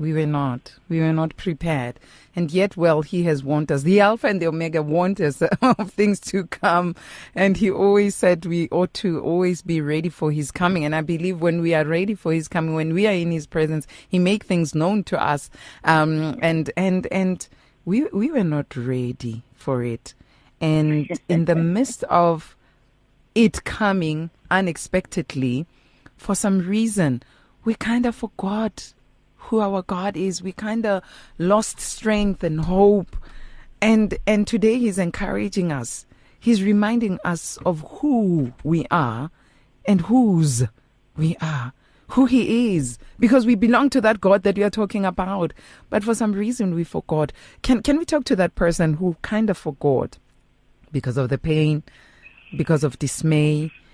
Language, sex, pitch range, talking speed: English, female, 150-205 Hz, 170 wpm